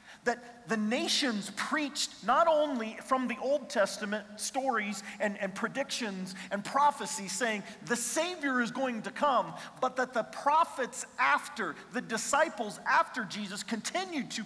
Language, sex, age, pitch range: English, male, 40-59, 200-240 Hz